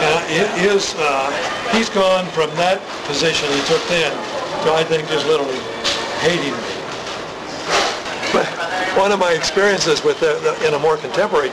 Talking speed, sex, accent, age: 155 wpm, male, American, 60-79